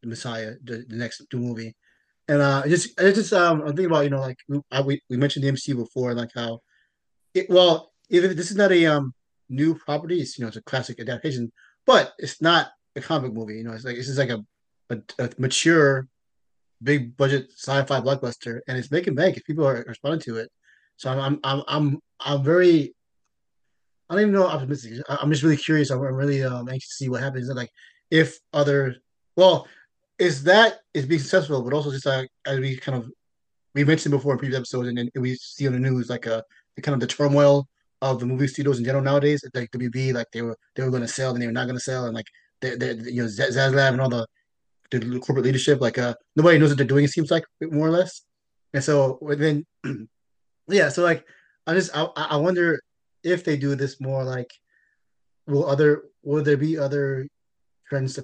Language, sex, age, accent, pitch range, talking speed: English, male, 30-49, American, 125-150 Hz, 215 wpm